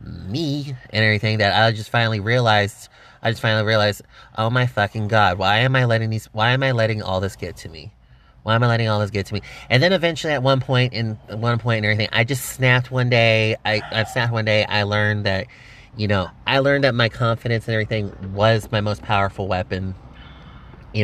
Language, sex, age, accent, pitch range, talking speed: English, male, 30-49, American, 105-120 Hz, 225 wpm